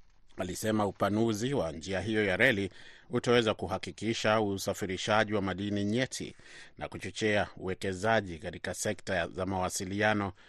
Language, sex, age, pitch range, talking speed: Swahili, male, 30-49, 95-115 Hz, 120 wpm